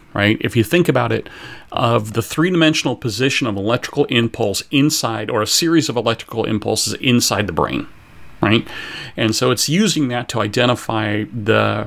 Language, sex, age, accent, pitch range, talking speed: English, male, 40-59, American, 110-135 Hz, 165 wpm